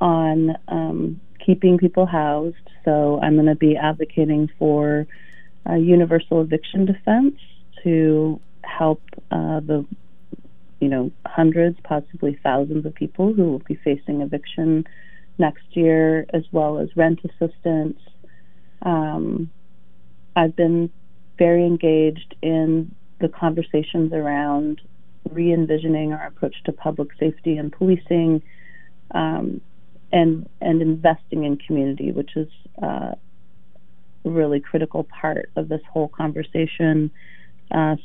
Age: 40-59